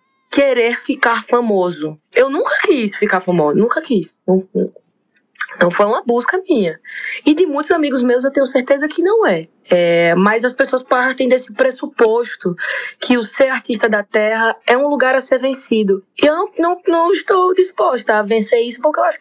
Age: 20-39